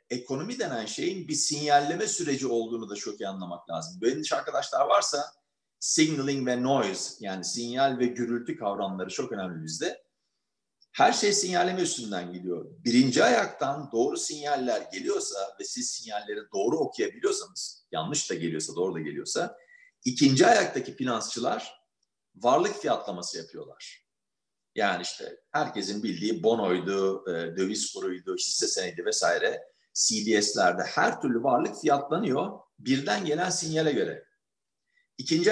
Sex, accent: male, native